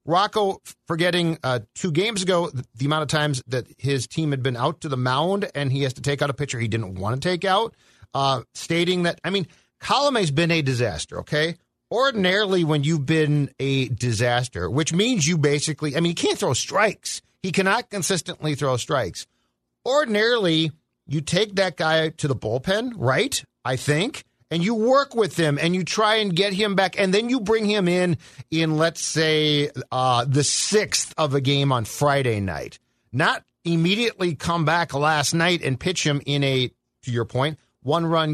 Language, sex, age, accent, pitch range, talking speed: English, male, 40-59, American, 130-180 Hz, 190 wpm